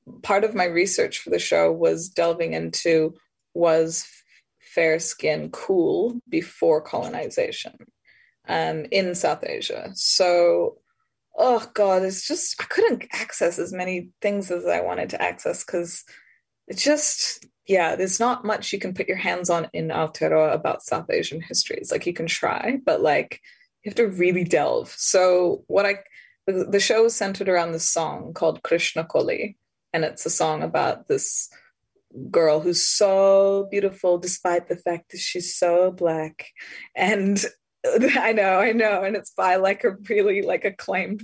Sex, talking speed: female, 160 wpm